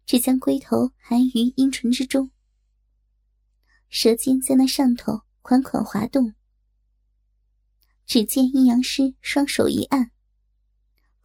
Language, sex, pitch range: Chinese, male, 230-275 Hz